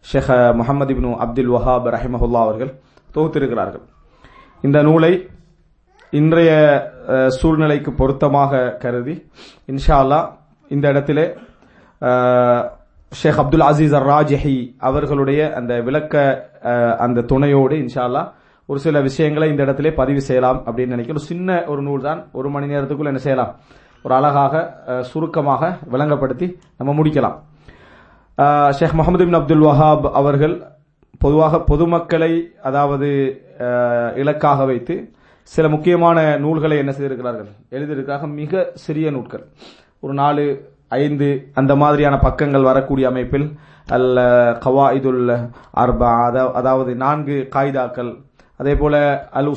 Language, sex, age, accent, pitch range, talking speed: English, male, 30-49, Indian, 130-150 Hz, 75 wpm